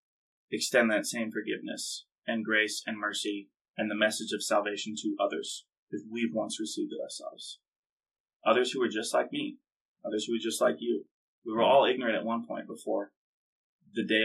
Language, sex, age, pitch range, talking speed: English, male, 20-39, 110-130 Hz, 185 wpm